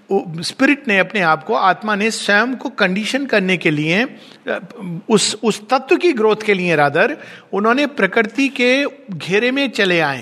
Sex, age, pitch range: male, 50-69, 190-245 Hz